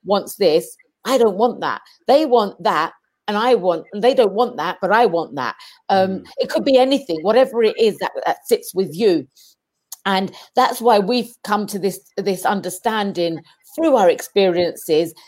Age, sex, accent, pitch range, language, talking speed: 40-59, female, British, 195-265 Hz, English, 180 wpm